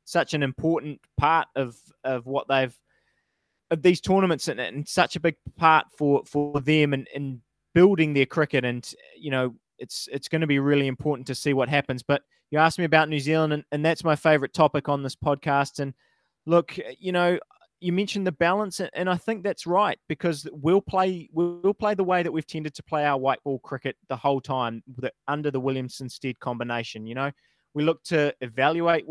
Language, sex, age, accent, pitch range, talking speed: English, male, 20-39, Australian, 135-170 Hz, 205 wpm